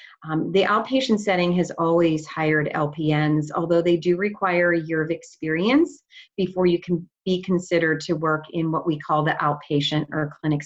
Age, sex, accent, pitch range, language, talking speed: 40-59, female, American, 155-185 Hz, English, 175 wpm